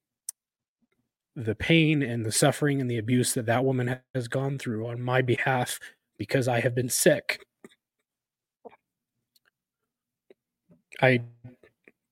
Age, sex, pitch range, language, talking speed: 20-39, male, 115-130 Hz, English, 115 wpm